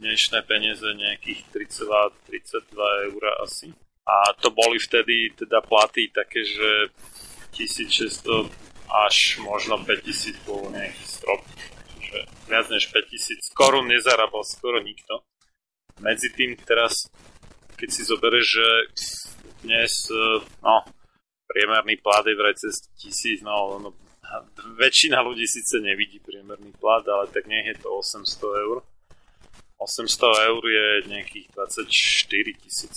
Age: 30-49